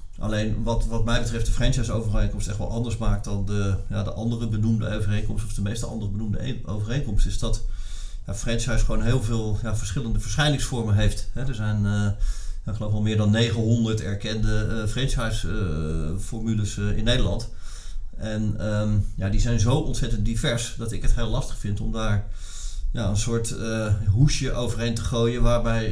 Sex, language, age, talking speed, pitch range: male, Dutch, 40-59, 180 wpm, 105-120 Hz